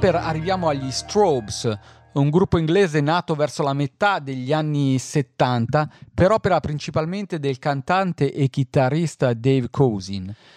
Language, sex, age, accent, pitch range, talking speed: Italian, male, 40-59, native, 125-160 Hz, 125 wpm